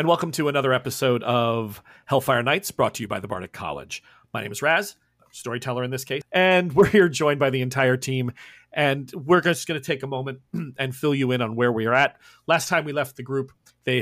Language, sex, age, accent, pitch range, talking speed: English, male, 40-59, American, 120-145 Hz, 235 wpm